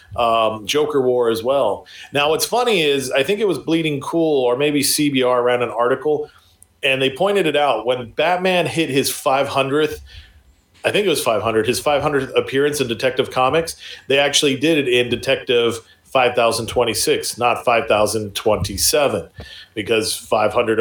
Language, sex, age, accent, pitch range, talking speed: English, male, 40-59, American, 110-145 Hz, 155 wpm